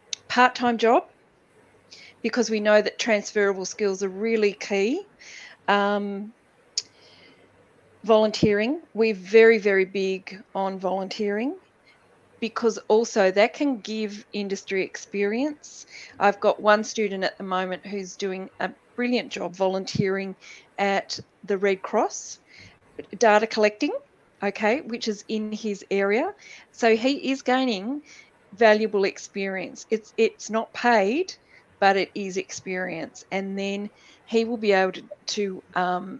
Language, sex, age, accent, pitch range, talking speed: English, female, 40-59, Australian, 195-225 Hz, 125 wpm